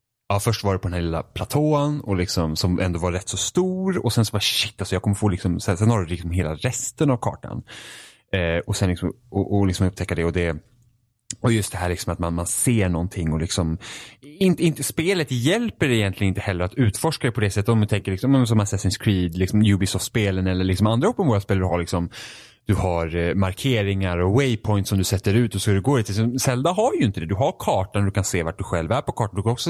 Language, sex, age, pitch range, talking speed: Swedish, male, 30-49, 90-120 Hz, 245 wpm